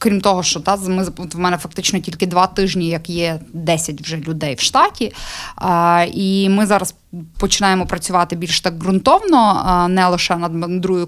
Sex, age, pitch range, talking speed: female, 20-39, 175-220 Hz, 170 wpm